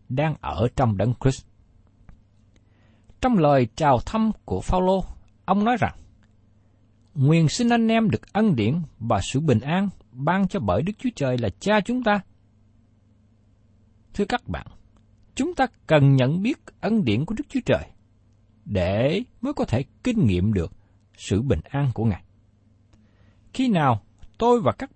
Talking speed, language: 160 wpm, Vietnamese